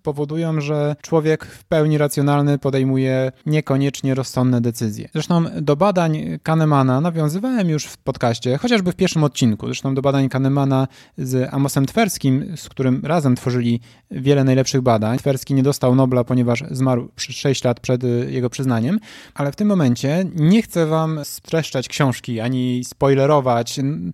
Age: 20-39